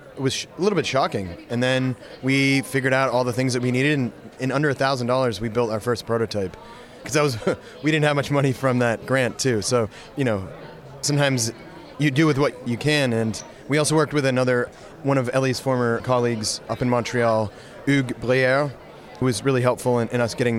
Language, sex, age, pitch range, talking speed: English, male, 30-49, 120-135 Hz, 205 wpm